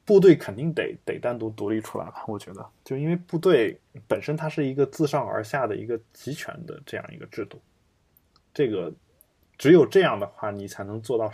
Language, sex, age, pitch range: Chinese, male, 20-39, 110-150 Hz